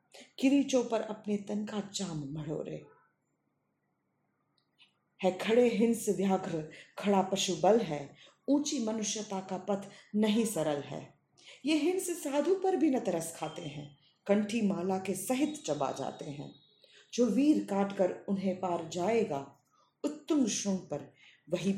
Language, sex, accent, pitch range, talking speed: Hindi, female, native, 170-245 Hz, 130 wpm